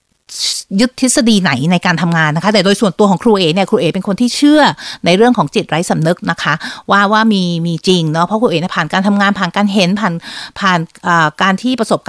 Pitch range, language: 175-225 Hz, Thai